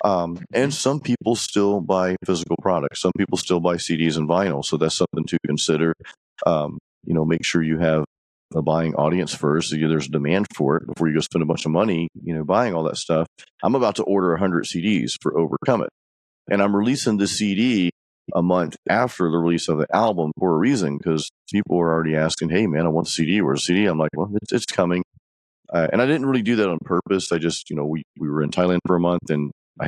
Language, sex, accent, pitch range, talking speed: English, male, American, 80-100 Hz, 230 wpm